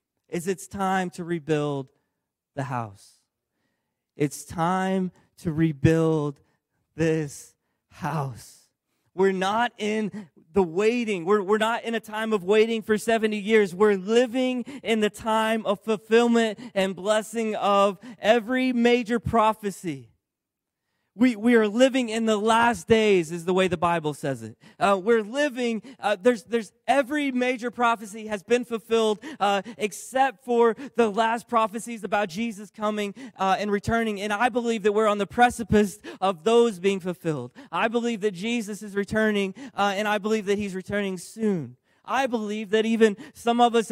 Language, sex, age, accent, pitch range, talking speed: English, male, 20-39, American, 185-230 Hz, 155 wpm